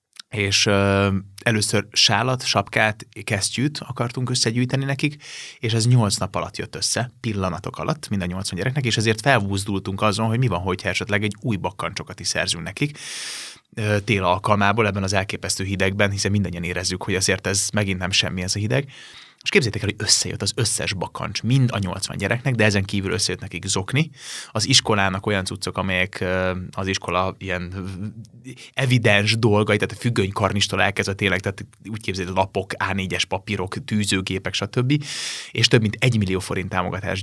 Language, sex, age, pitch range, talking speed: Hungarian, male, 20-39, 95-115 Hz, 165 wpm